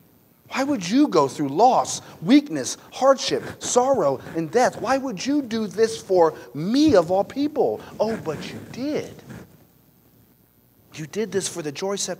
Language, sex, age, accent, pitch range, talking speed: English, male, 40-59, American, 140-205 Hz, 155 wpm